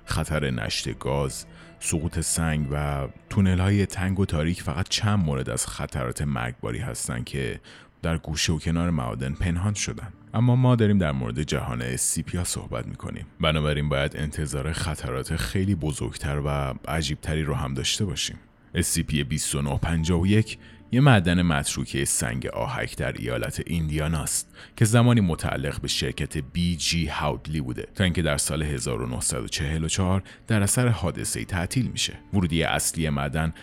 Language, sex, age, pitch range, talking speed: Persian, male, 30-49, 75-100 Hz, 135 wpm